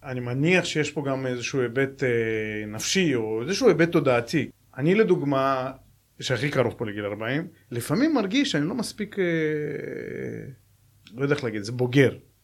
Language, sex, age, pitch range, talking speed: Hebrew, male, 30-49, 115-155 Hz, 150 wpm